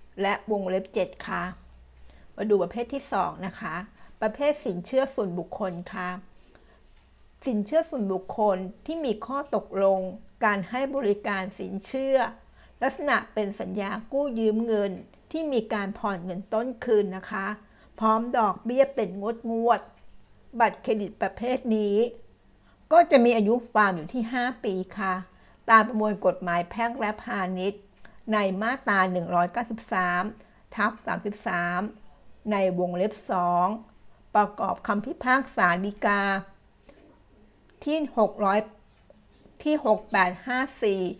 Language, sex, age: Thai, female, 60-79